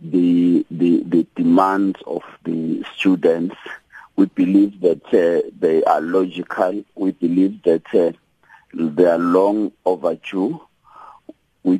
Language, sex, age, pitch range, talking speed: English, male, 50-69, 90-120 Hz, 115 wpm